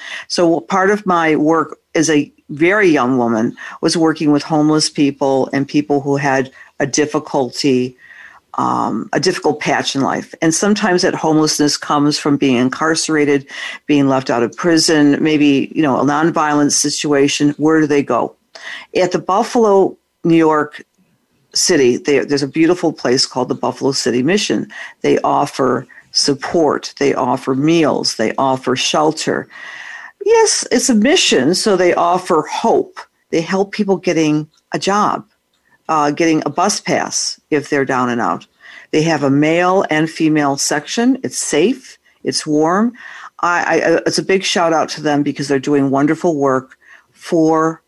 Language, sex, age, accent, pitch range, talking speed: English, female, 50-69, American, 145-180 Hz, 155 wpm